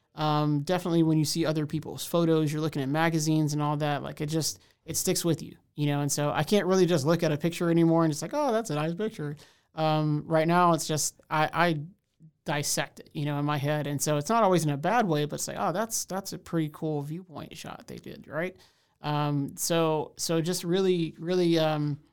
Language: English